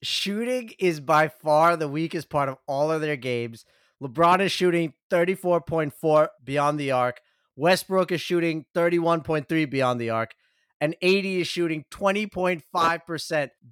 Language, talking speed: English, 135 wpm